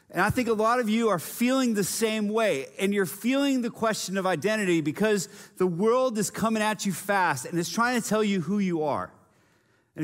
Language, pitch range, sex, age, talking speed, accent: English, 180-230 Hz, male, 30-49, 220 wpm, American